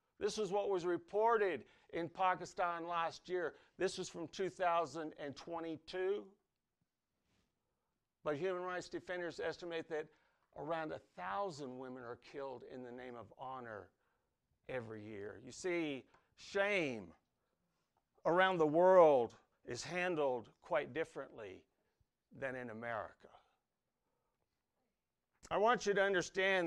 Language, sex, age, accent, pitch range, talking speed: English, male, 50-69, American, 145-190 Hz, 110 wpm